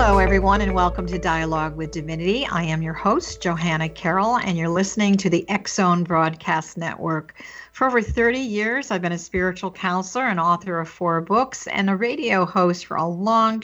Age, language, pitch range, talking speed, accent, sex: 50-69, English, 180-230 Hz, 190 wpm, American, female